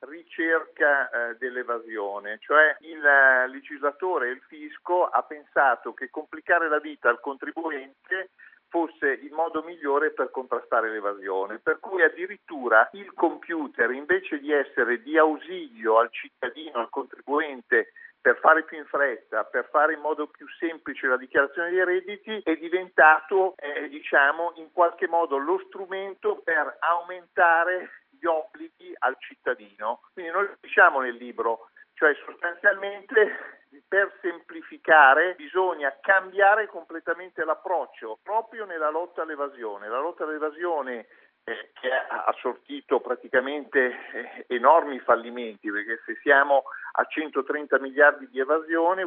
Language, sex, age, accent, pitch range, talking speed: Italian, male, 50-69, native, 140-190 Hz, 125 wpm